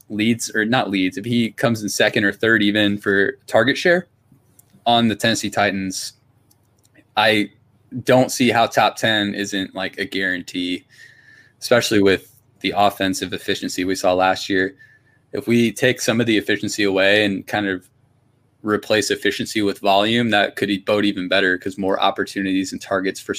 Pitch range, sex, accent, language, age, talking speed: 100-120 Hz, male, American, English, 20-39, 165 wpm